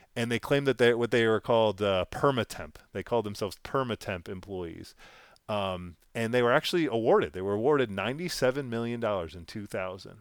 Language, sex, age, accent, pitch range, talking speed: English, male, 30-49, American, 100-125 Hz, 170 wpm